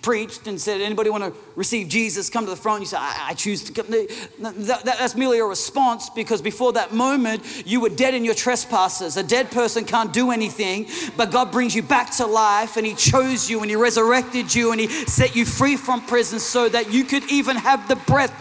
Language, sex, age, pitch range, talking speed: English, male, 40-59, 165-235 Hz, 220 wpm